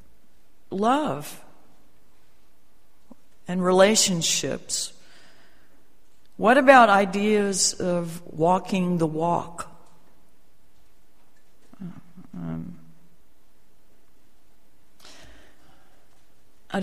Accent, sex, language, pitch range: American, female, English, 165-205 Hz